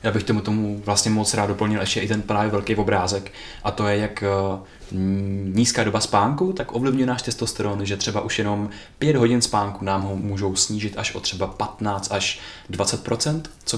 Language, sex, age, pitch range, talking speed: Czech, male, 20-39, 100-115 Hz, 185 wpm